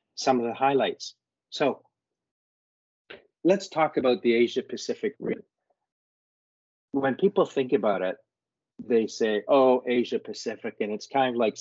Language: English